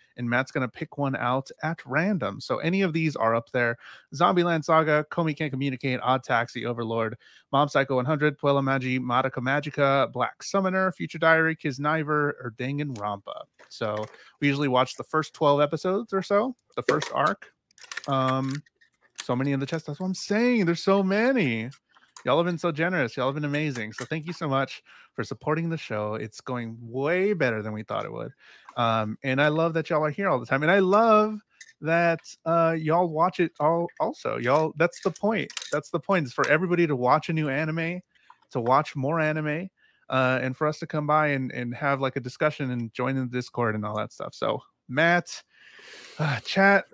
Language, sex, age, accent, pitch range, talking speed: English, male, 30-49, American, 130-170 Hz, 205 wpm